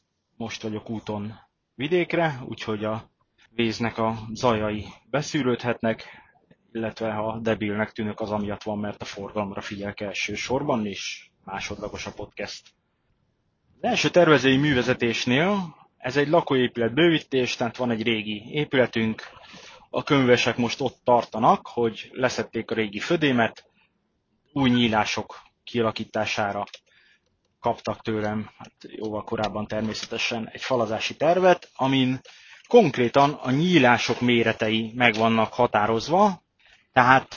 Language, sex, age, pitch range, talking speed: Hungarian, male, 20-39, 110-130 Hz, 110 wpm